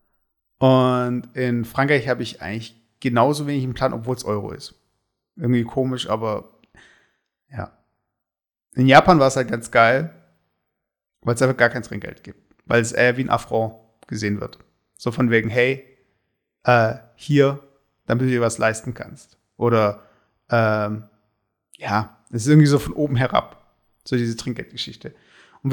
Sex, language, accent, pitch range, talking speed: male, German, German, 115-135 Hz, 155 wpm